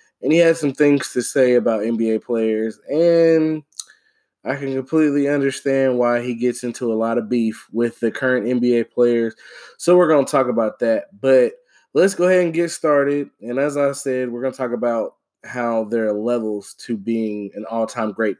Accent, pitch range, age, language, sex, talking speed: American, 110-140 Hz, 20-39, English, male, 195 wpm